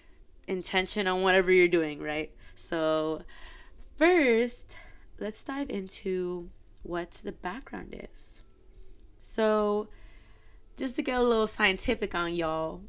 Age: 20-39